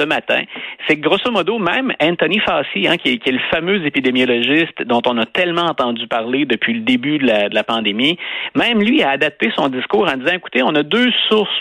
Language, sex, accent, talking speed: French, male, Canadian, 210 wpm